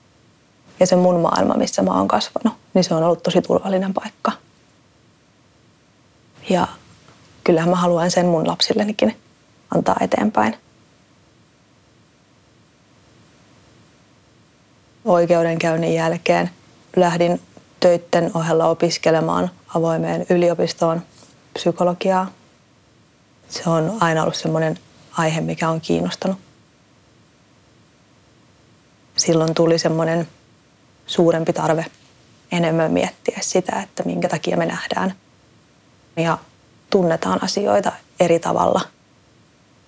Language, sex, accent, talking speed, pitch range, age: Finnish, female, native, 90 wpm, 165-180 Hz, 30-49